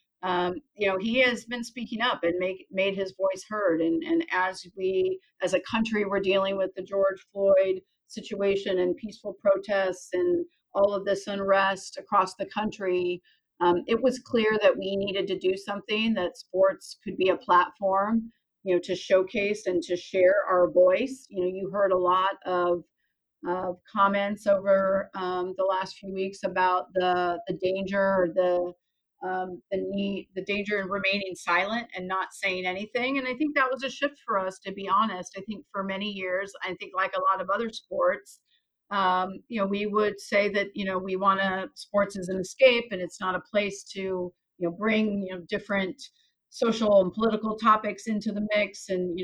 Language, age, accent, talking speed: English, 40-59, American, 195 wpm